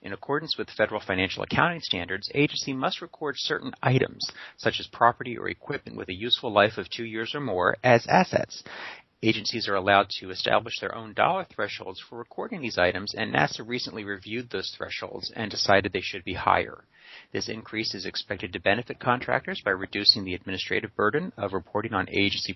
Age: 40-59